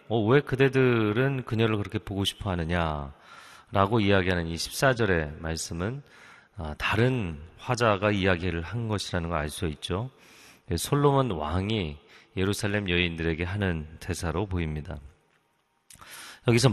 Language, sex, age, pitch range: Korean, male, 40-59, 85-115 Hz